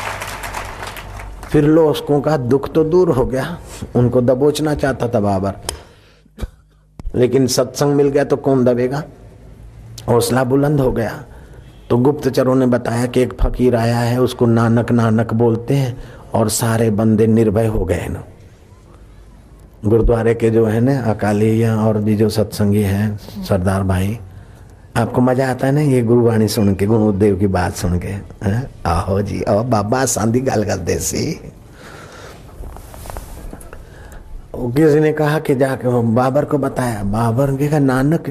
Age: 50-69